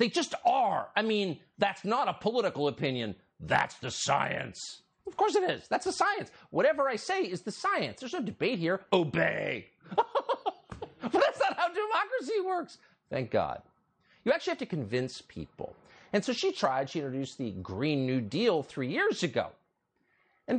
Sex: male